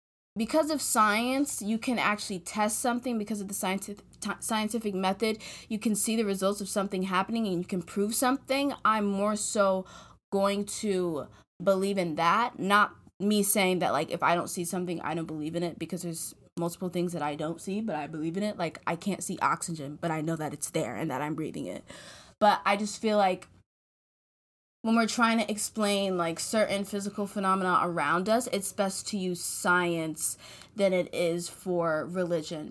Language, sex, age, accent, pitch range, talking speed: English, female, 20-39, American, 175-210 Hz, 190 wpm